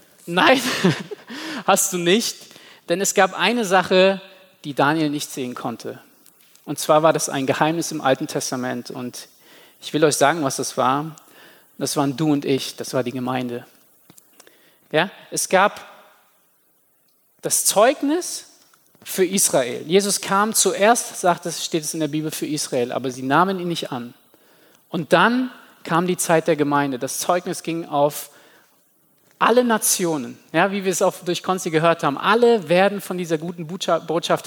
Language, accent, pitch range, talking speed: German, German, 150-195 Hz, 160 wpm